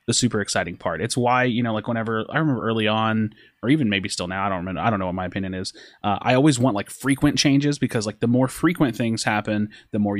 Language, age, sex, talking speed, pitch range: English, 20-39, male, 260 wpm, 110-140 Hz